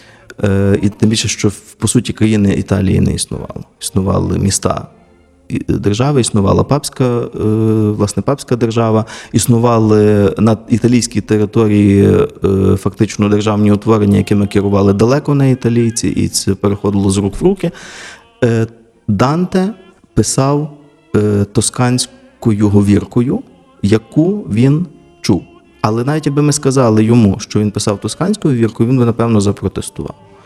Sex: male